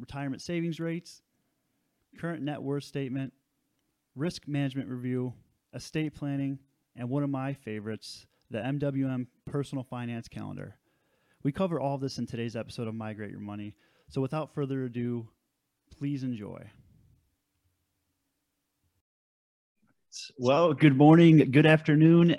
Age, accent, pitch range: 20-39, American, 120-145 Hz